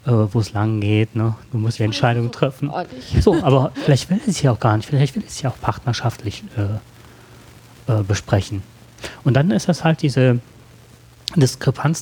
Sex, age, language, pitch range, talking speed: male, 30-49, German, 115-140 Hz, 185 wpm